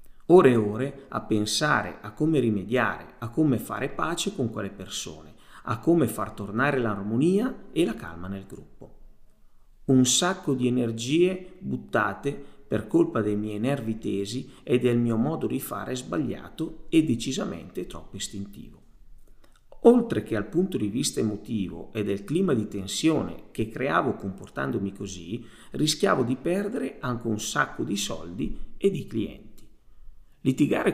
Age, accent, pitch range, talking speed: 40-59, native, 105-140 Hz, 145 wpm